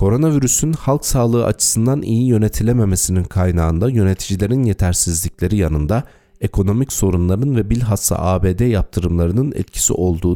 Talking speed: 105 wpm